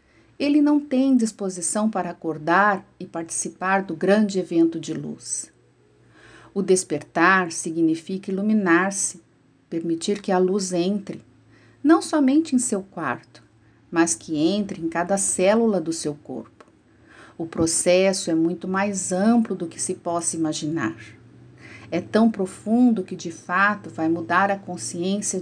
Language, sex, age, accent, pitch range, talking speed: Portuguese, female, 50-69, Brazilian, 165-215 Hz, 135 wpm